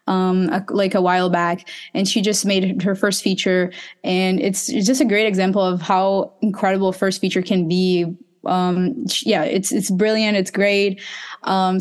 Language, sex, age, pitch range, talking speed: English, female, 20-39, 185-220 Hz, 175 wpm